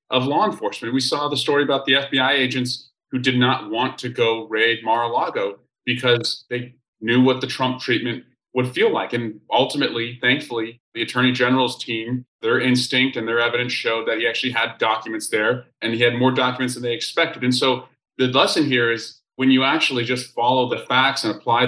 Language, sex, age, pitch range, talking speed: English, male, 30-49, 115-130 Hz, 195 wpm